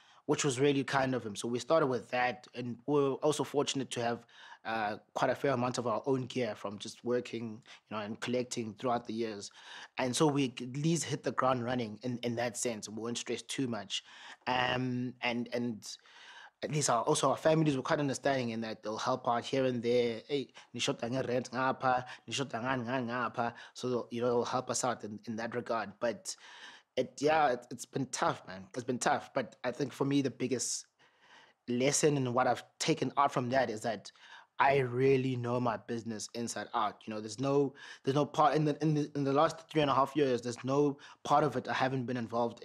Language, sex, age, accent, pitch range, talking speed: English, male, 20-39, South African, 120-135 Hz, 210 wpm